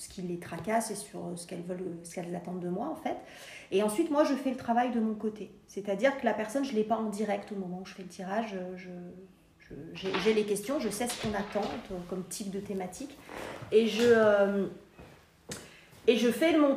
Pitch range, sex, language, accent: 195-245 Hz, female, French, French